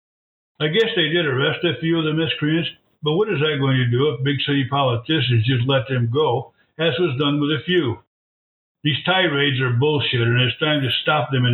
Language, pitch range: English, 125-155 Hz